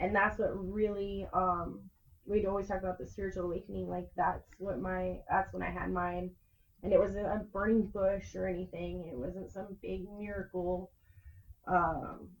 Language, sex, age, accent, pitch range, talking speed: English, female, 20-39, American, 165-200 Hz, 170 wpm